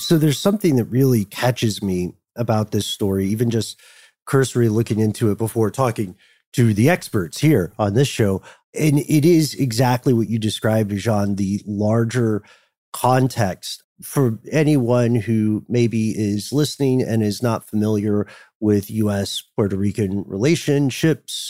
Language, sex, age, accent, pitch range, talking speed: English, male, 40-59, American, 105-130 Hz, 140 wpm